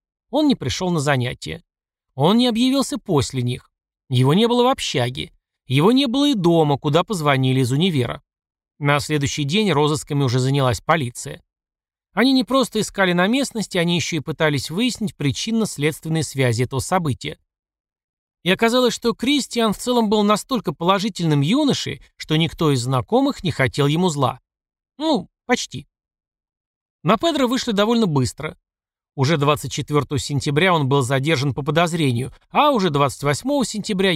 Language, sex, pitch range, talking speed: Russian, male, 135-220 Hz, 145 wpm